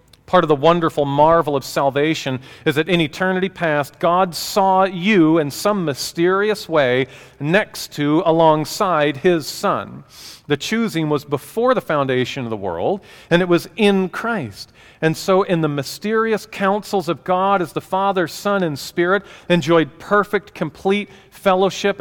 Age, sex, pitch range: 40-59, male, 145-190 Hz